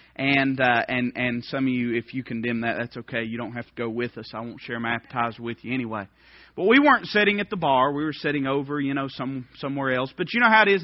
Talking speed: 275 wpm